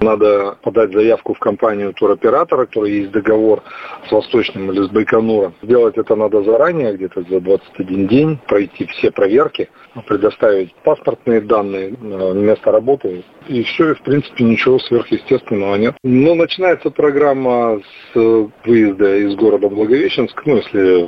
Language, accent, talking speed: Russian, native, 135 wpm